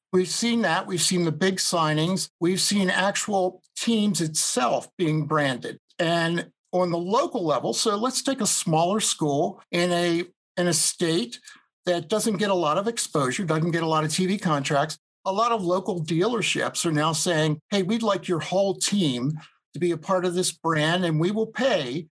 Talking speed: 190 wpm